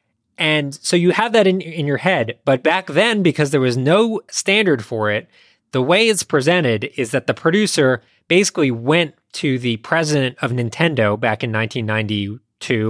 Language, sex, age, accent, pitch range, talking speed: English, male, 20-39, American, 125-165 Hz, 170 wpm